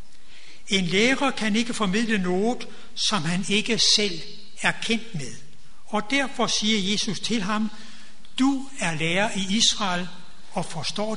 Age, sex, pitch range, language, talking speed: 60-79, male, 180-230 Hz, Danish, 140 wpm